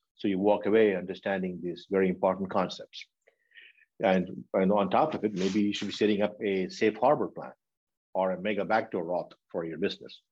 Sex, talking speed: male, 190 wpm